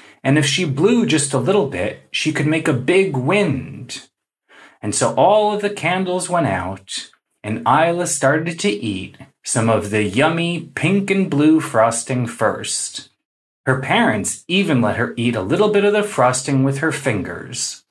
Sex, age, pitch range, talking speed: male, 30-49, 120-175 Hz, 170 wpm